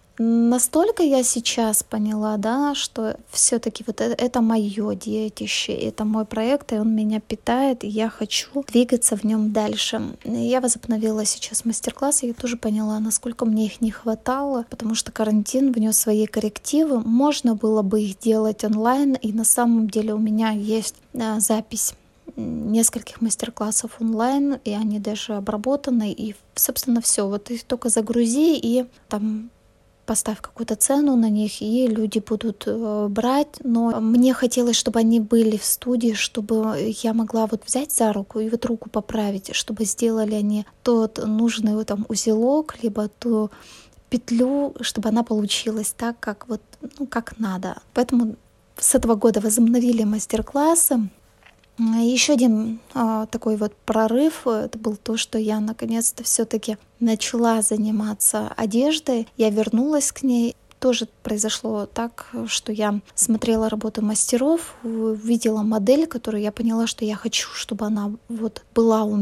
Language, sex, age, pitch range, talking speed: Russian, female, 20-39, 215-245 Hz, 145 wpm